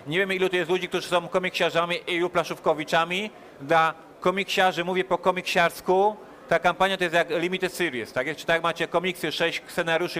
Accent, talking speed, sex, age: native, 170 wpm, male, 30-49